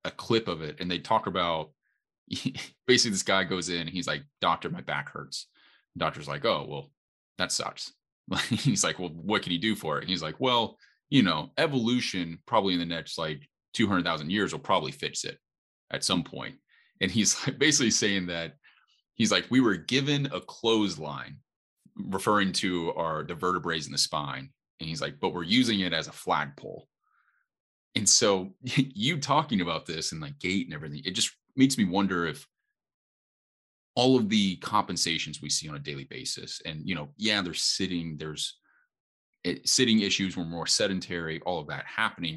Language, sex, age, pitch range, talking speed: English, male, 30-49, 80-100 Hz, 185 wpm